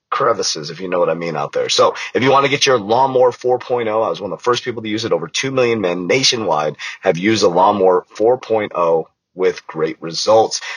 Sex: male